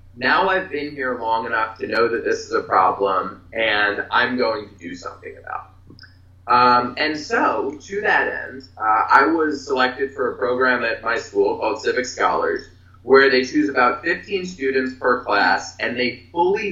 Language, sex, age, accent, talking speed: English, male, 20-39, American, 185 wpm